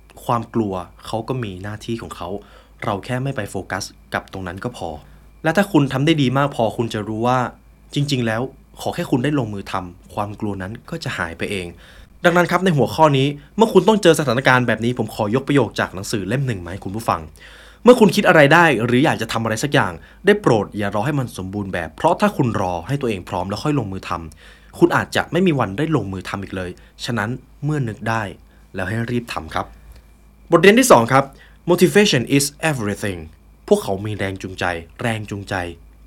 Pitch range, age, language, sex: 100-145 Hz, 20-39, Thai, male